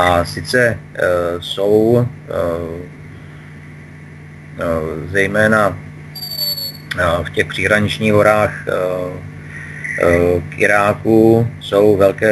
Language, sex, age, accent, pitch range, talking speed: Czech, male, 40-59, native, 85-105 Hz, 75 wpm